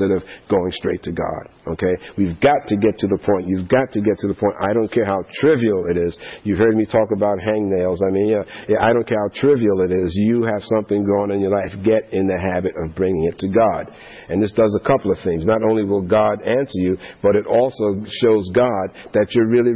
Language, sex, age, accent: English, male, 50-69, American